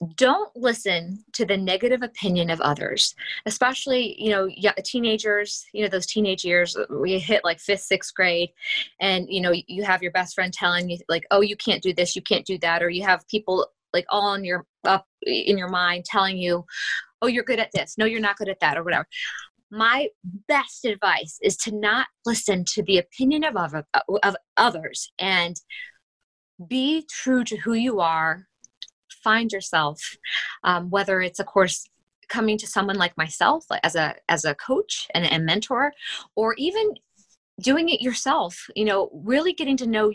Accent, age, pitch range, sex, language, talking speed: American, 20-39, 185-255 Hz, female, English, 185 wpm